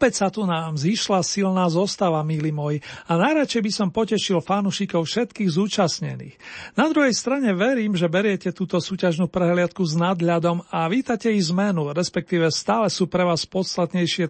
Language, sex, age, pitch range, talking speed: Slovak, male, 40-59, 170-200 Hz, 160 wpm